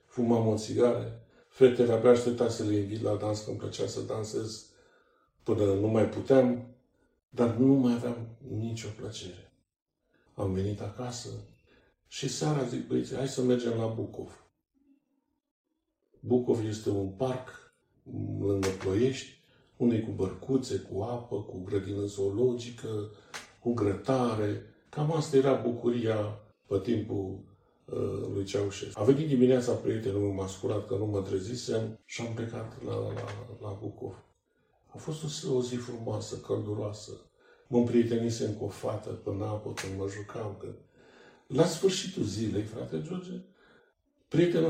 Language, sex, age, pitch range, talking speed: Romanian, male, 50-69, 105-130 Hz, 140 wpm